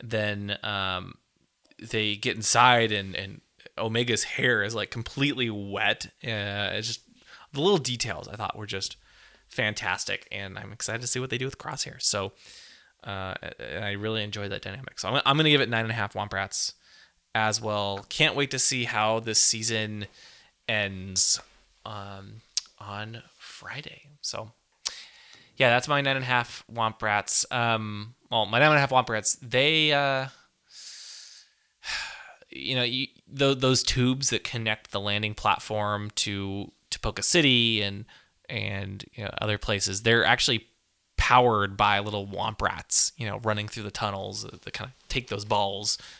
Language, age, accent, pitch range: English, 20-39, American, 100-125 Hz